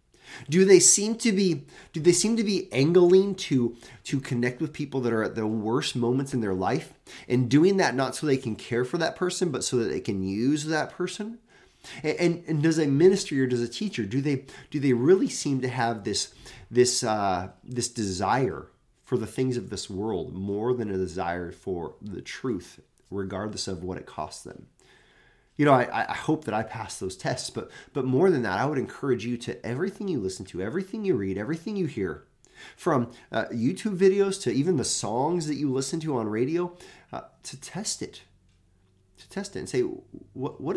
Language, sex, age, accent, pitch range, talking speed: English, male, 30-49, American, 110-175 Hz, 205 wpm